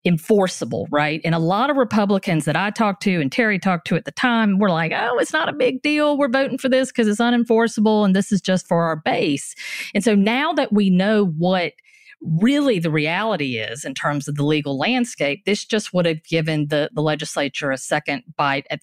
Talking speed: 220 wpm